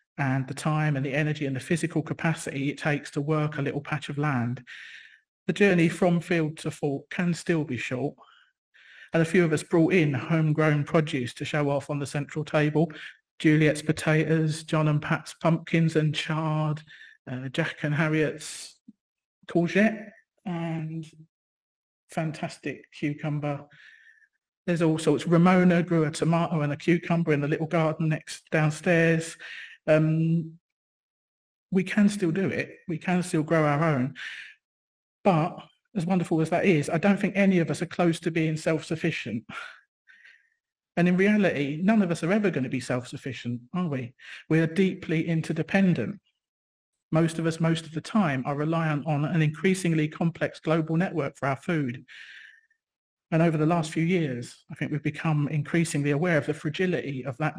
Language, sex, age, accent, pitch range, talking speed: English, male, 40-59, British, 150-170 Hz, 165 wpm